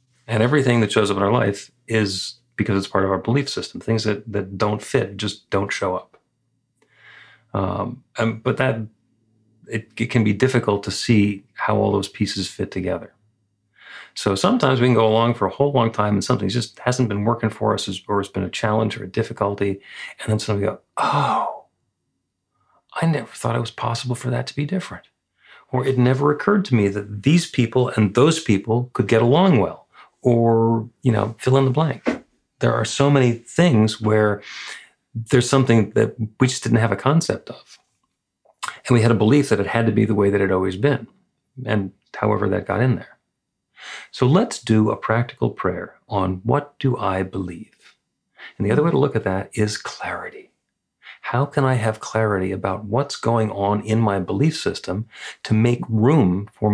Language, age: English, 40-59